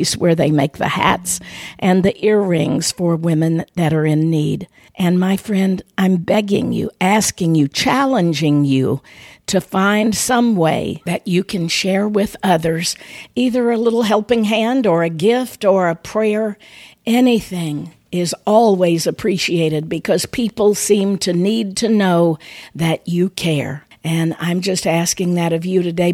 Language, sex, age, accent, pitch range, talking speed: English, female, 50-69, American, 175-215 Hz, 155 wpm